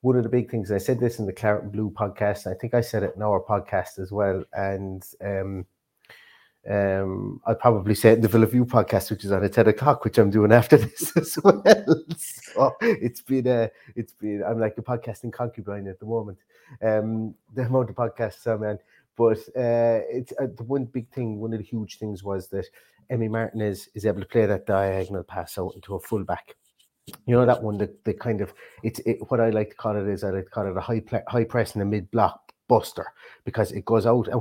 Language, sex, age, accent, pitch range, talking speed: English, male, 30-49, British, 100-115 Hz, 235 wpm